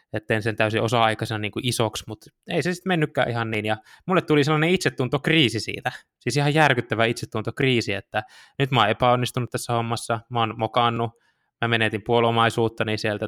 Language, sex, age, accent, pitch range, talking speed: Finnish, male, 20-39, native, 110-140 Hz, 165 wpm